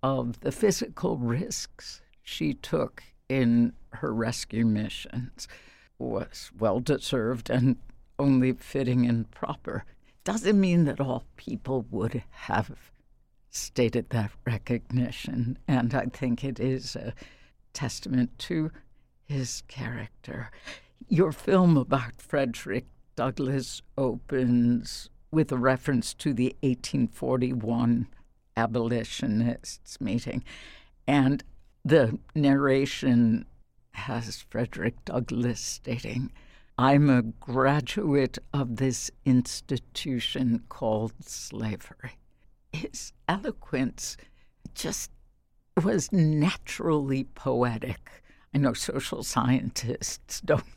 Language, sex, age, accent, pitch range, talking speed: English, female, 60-79, American, 120-135 Hz, 90 wpm